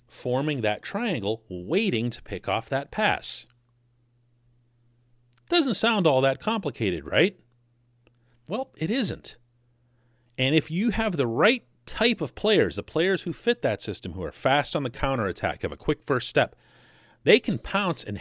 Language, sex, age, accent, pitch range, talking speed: English, male, 40-59, American, 120-175 Hz, 160 wpm